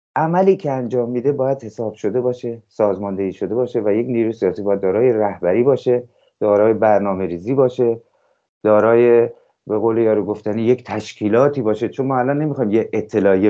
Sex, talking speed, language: male, 165 wpm, English